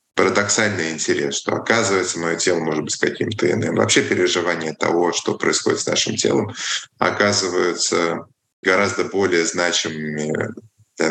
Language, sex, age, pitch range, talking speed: English, male, 20-39, 75-105 Hz, 130 wpm